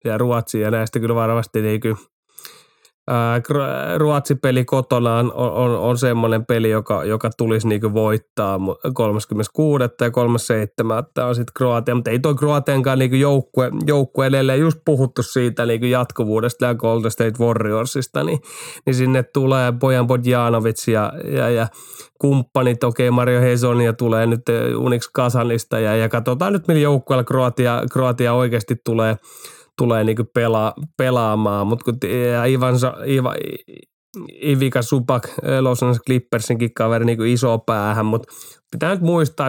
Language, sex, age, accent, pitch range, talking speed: Finnish, male, 30-49, native, 115-130 Hz, 135 wpm